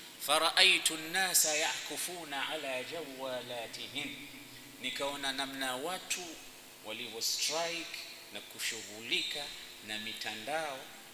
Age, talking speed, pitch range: 50-69, 80 wpm, 110-165 Hz